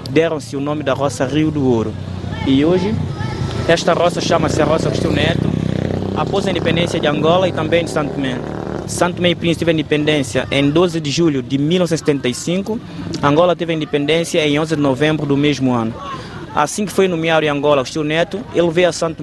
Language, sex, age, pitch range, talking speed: Portuguese, male, 20-39, 140-170 Hz, 195 wpm